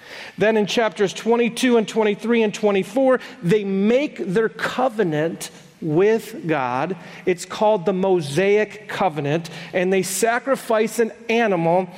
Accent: American